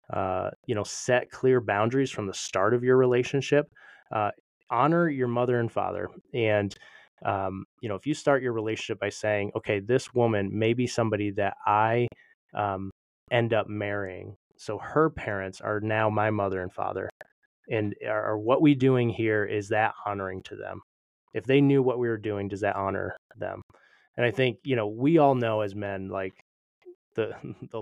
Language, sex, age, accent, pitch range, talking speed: English, male, 20-39, American, 100-125 Hz, 185 wpm